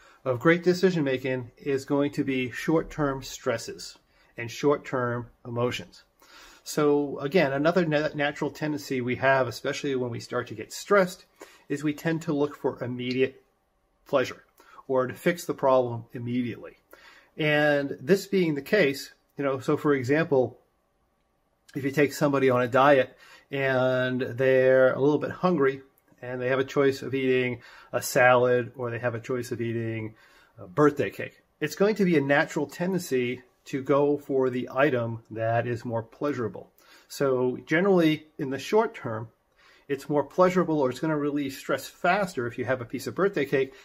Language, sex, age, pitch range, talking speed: English, male, 40-59, 125-150 Hz, 170 wpm